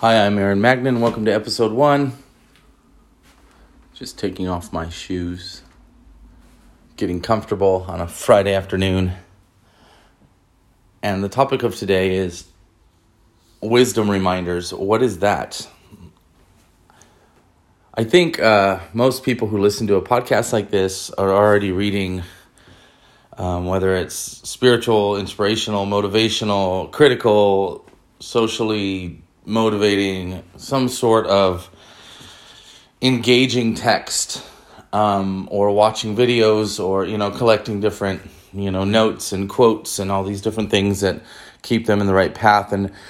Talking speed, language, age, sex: 120 wpm, English, 30-49, male